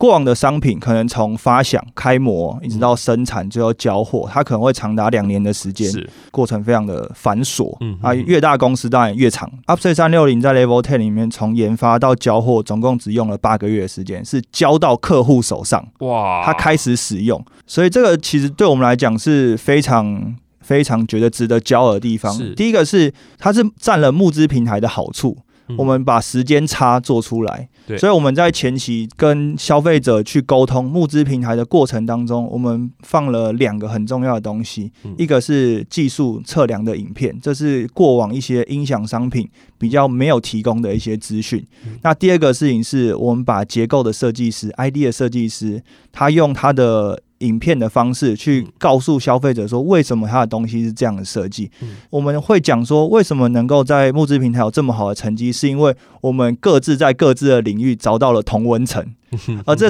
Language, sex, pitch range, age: Chinese, male, 115-140 Hz, 20-39